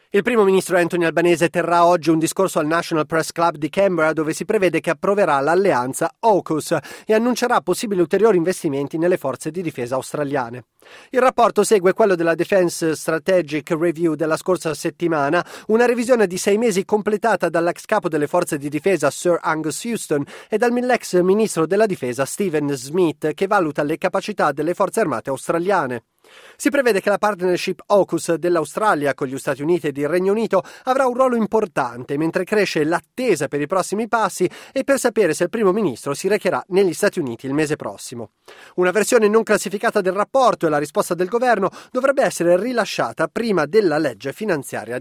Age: 30-49